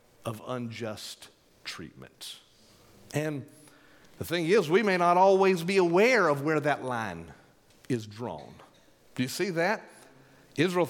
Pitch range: 120-165 Hz